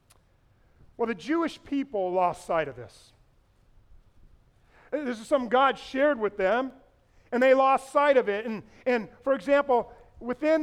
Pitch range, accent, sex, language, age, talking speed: 220-275 Hz, American, male, English, 40-59, 145 wpm